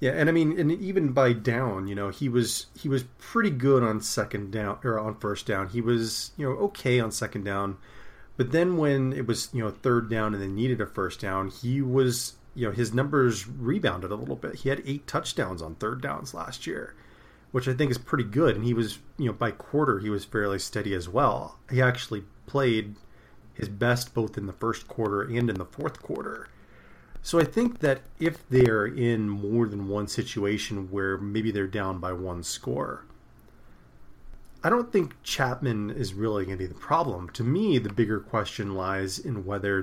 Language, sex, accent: English, male, American